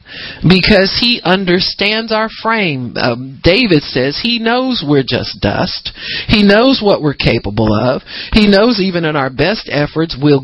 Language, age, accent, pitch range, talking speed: English, 50-69, American, 125-170 Hz, 155 wpm